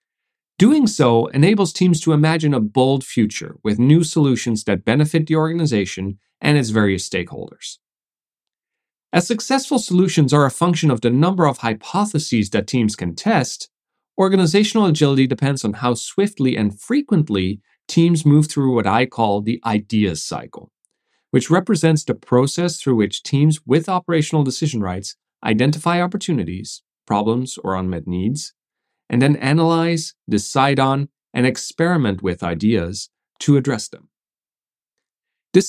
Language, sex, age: English, male, 40-59